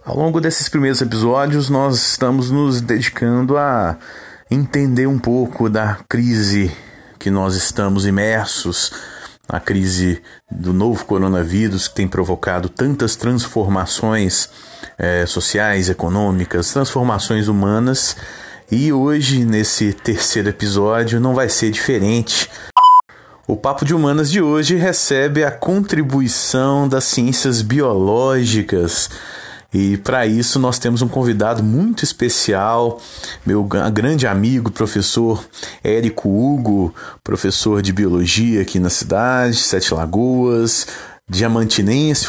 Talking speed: 110 wpm